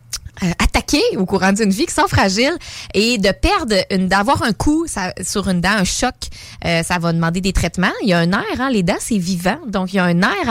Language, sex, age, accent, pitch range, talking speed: French, female, 20-39, Canadian, 175-225 Hz, 235 wpm